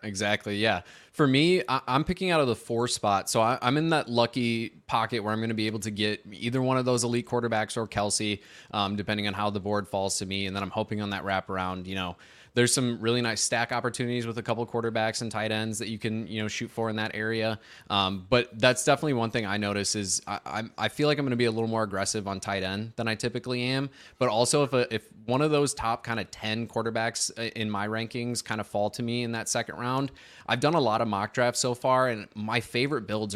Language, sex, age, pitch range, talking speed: English, male, 20-39, 105-120 Hz, 255 wpm